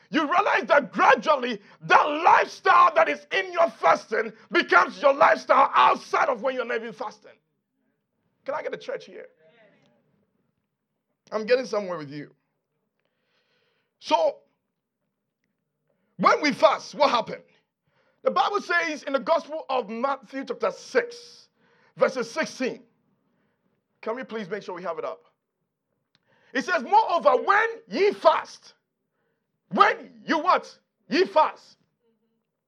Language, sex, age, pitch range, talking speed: English, male, 50-69, 265-360 Hz, 130 wpm